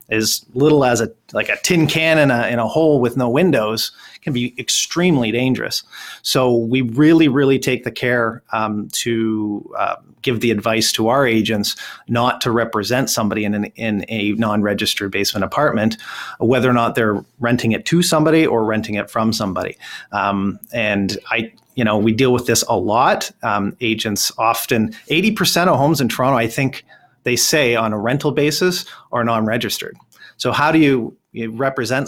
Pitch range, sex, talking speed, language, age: 110-135 Hz, male, 180 wpm, English, 30-49